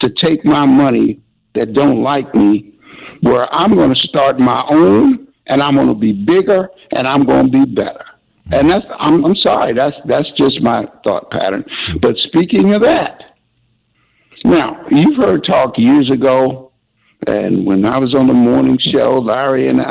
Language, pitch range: English, 115-150 Hz